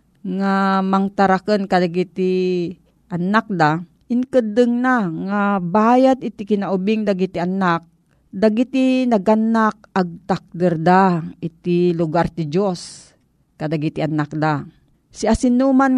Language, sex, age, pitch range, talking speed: Filipino, female, 40-59, 170-210 Hz, 100 wpm